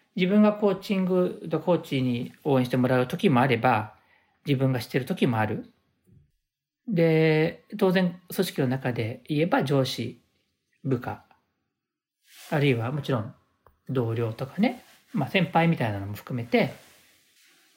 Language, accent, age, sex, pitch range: Japanese, native, 40-59, male, 125-180 Hz